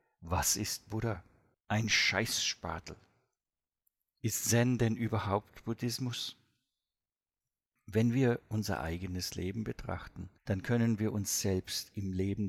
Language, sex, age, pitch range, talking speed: English, male, 50-69, 95-115 Hz, 110 wpm